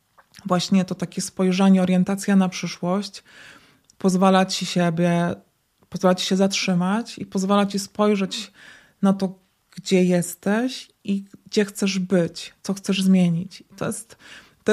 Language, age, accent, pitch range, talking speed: Polish, 20-39, native, 180-195 Hz, 130 wpm